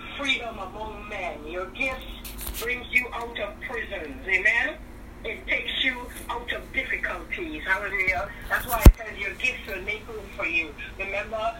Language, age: English, 40-59